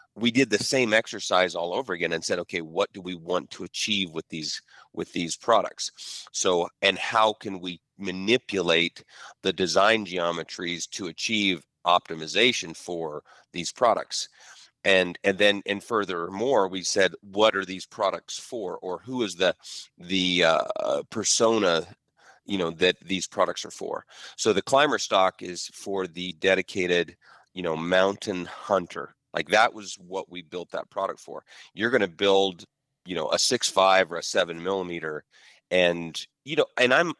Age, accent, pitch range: 40-59, American, 90-105 Hz